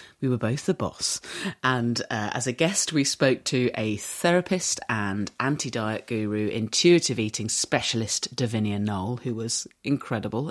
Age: 30-49